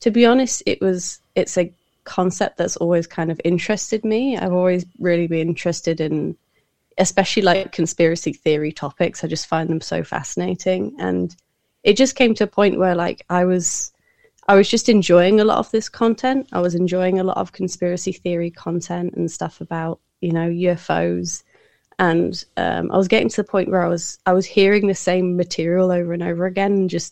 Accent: British